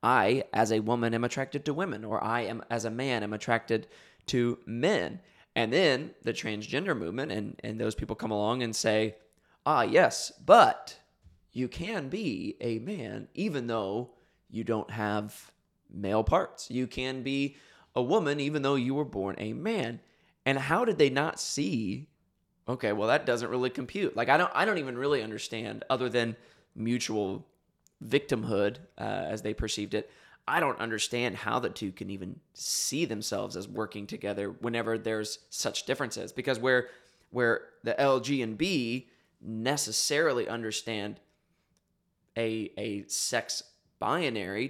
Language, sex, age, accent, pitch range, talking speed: English, male, 20-39, American, 105-130 Hz, 160 wpm